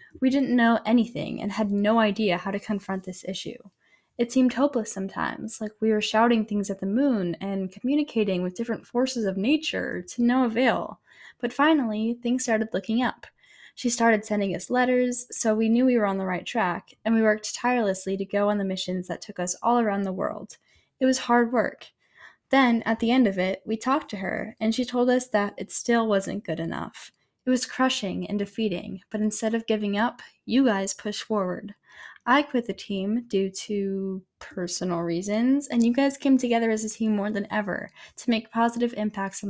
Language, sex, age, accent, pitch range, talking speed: English, female, 10-29, American, 195-245 Hz, 200 wpm